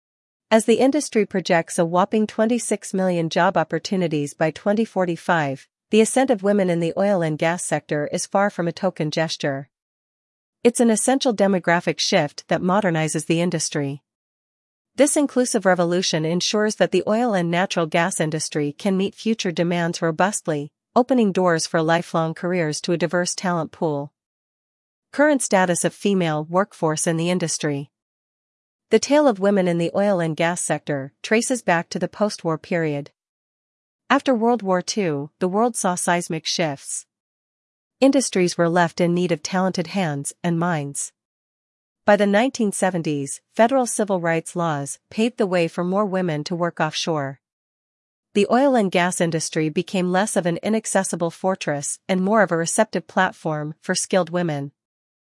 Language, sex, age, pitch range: English, female, 40-59, 165-205 Hz